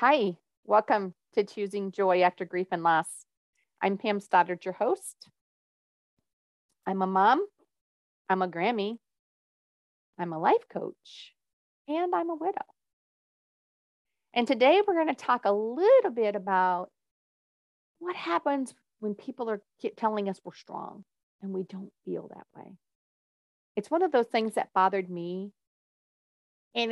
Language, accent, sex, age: English, American, female, 40-59